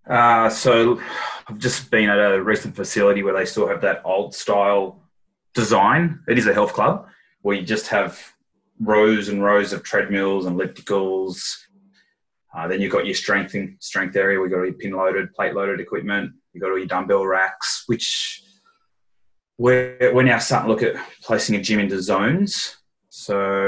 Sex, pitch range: male, 95-110 Hz